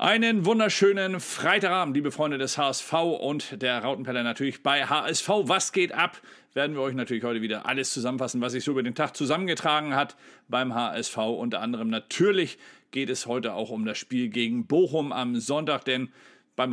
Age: 40-59